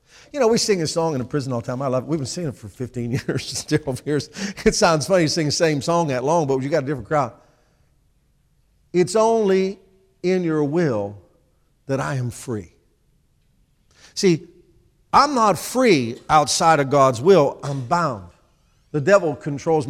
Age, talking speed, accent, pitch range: 50-69, 185 wpm, American, 150-230 Hz